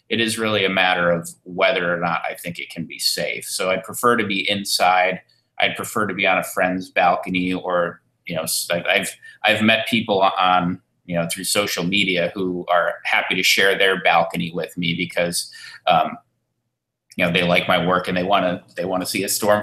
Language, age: English, 30-49